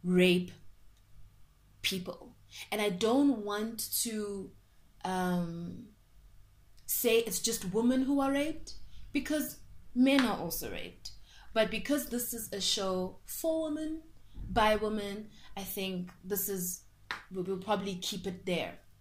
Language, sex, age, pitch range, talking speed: English, female, 20-39, 180-225 Hz, 125 wpm